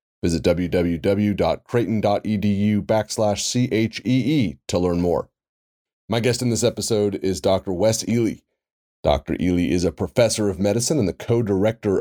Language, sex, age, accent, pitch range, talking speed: English, male, 30-49, American, 90-115 Hz, 130 wpm